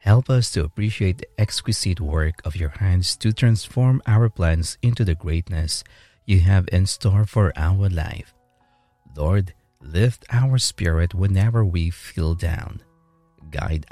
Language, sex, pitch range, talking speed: English, male, 85-110 Hz, 140 wpm